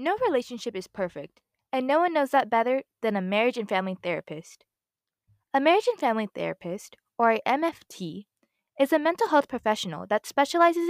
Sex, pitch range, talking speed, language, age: female, 190-285 Hz, 170 wpm, English, 10-29